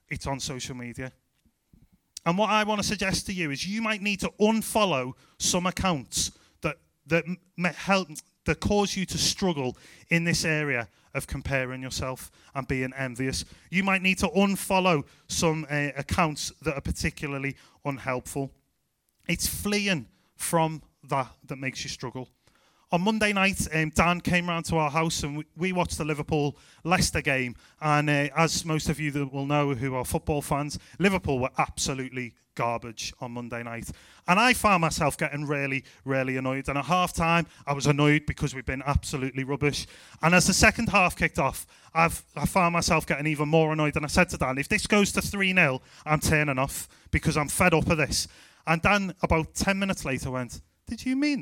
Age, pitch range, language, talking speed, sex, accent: 30-49, 135-180 Hz, English, 185 wpm, male, British